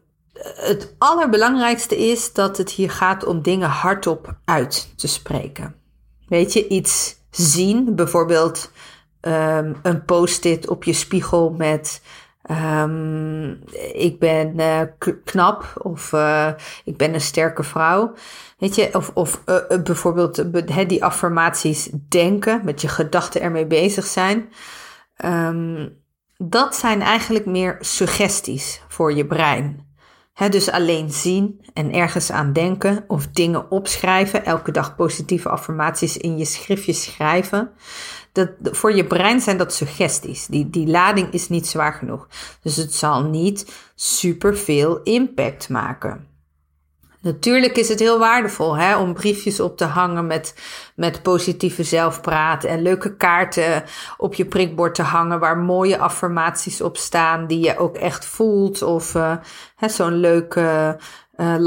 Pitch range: 160-190 Hz